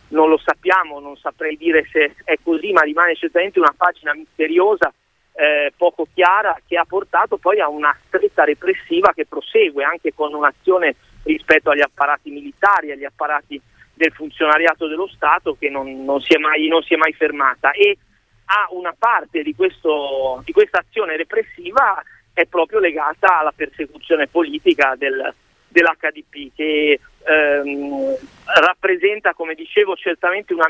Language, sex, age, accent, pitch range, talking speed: Italian, male, 40-59, native, 150-200 Hz, 150 wpm